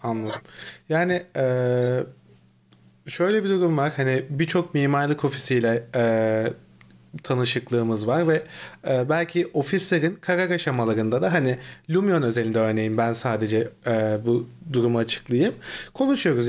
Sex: male